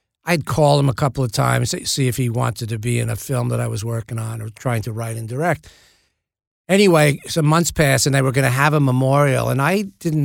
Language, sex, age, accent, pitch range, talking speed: English, male, 50-69, American, 120-140 Hz, 250 wpm